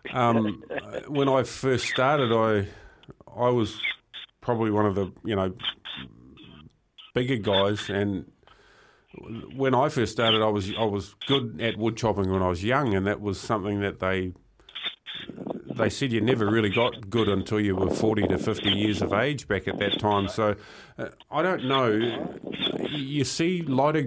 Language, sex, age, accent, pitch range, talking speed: English, male, 40-59, Australian, 105-125 Hz, 165 wpm